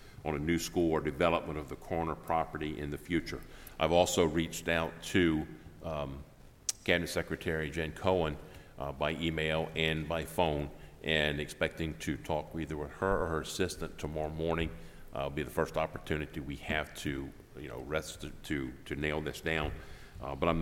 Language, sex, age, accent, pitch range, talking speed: English, male, 50-69, American, 75-80 Hz, 180 wpm